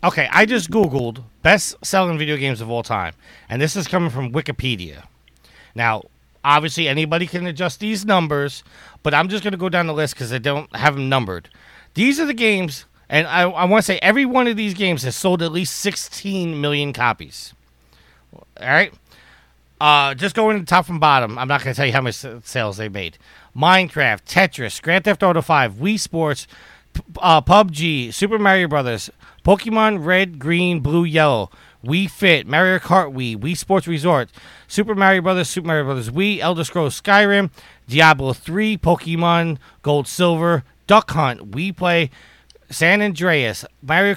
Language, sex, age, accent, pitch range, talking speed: English, male, 30-49, American, 135-185 Hz, 175 wpm